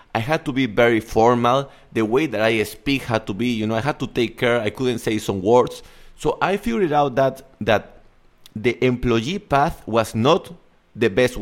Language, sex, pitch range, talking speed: English, male, 105-140 Hz, 205 wpm